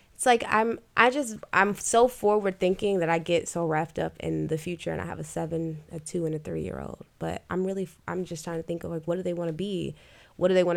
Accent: American